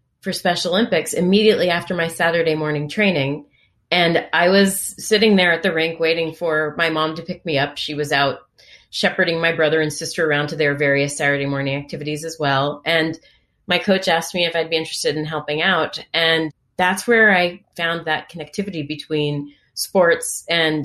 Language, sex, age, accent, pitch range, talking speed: English, female, 30-49, American, 150-185 Hz, 185 wpm